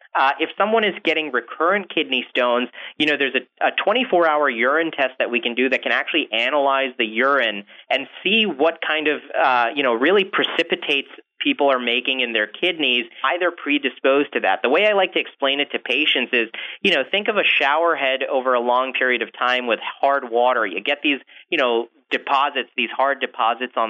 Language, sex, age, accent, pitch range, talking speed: English, male, 30-49, American, 130-170 Hz, 205 wpm